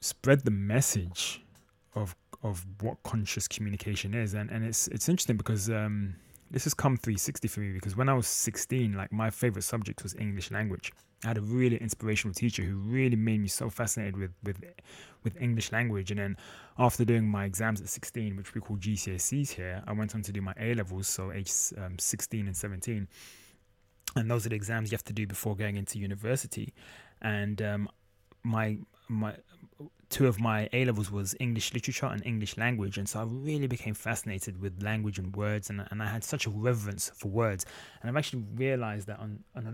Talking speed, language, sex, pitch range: 200 wpm, English, male, 100-120 Hz